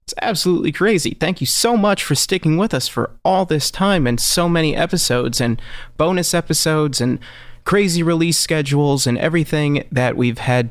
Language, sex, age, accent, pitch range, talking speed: English, male, 30-49, American, 120-155 Hz, 170 wpm